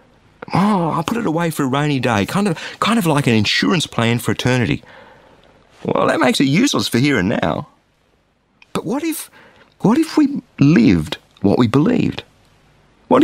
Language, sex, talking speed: English, male, 175 wpm